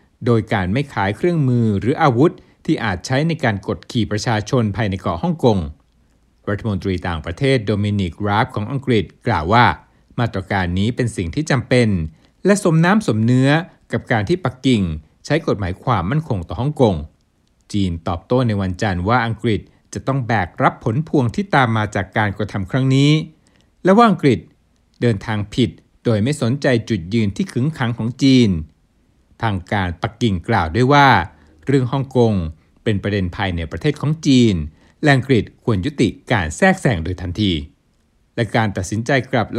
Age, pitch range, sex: 60-79, 100-135 Hz, male